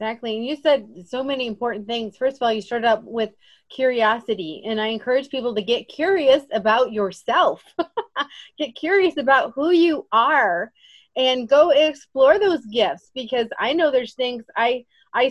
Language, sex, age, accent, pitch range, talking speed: English, female, 30-49, American, 205-260 Hz, 170 wpm